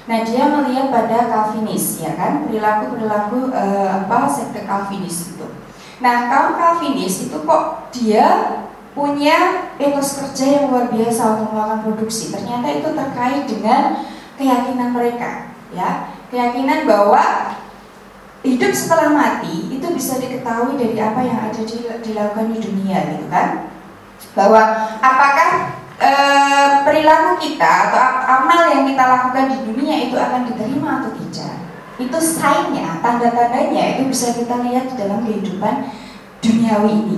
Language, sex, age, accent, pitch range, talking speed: Indonesian, female, 20-39, native, 210-275 Hz, 135 wpm